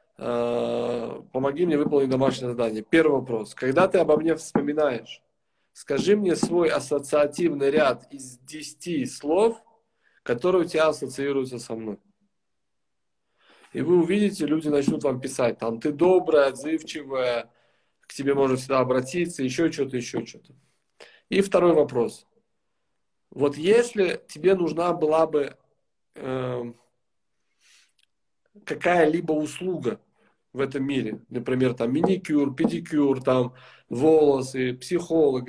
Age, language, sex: 40-59, Russian, male